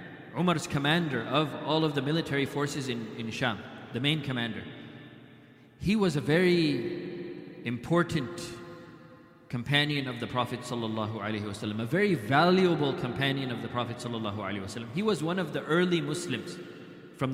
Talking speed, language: 145 wpm, English